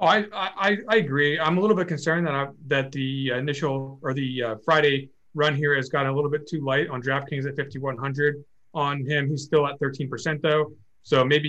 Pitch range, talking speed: 125-155 Hz, 215 wpm